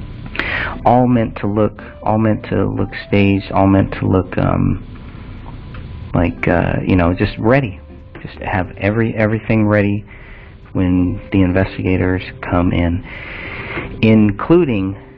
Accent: American